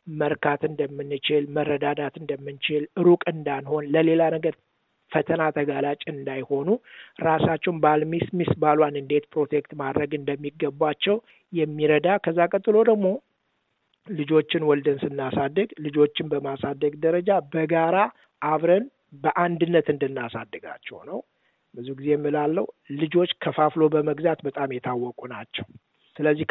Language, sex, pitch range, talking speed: Amharic, male, 145-170 Hz, 95 wpm